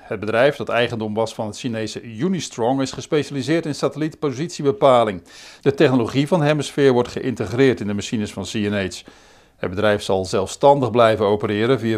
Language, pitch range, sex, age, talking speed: Dutch, 115-155 Hz, male, 50-69, 155 wpm